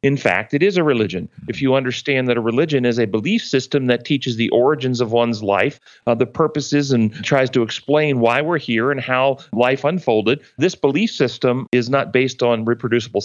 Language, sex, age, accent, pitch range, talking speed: English, male, 40-59, American, 120-145 Hz, 205 wpm